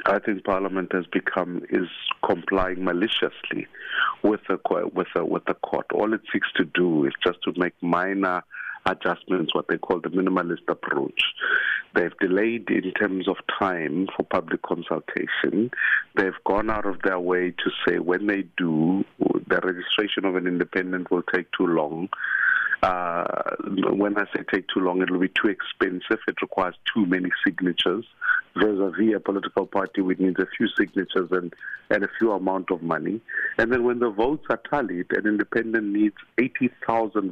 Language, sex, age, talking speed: English, male, 50-69, 165 wpm